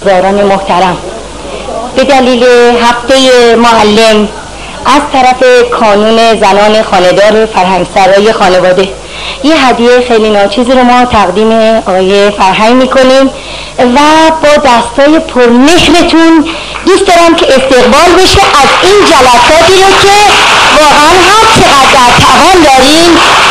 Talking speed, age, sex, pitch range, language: 105 wpm, 50-69, female, 230-320 Hz, Persian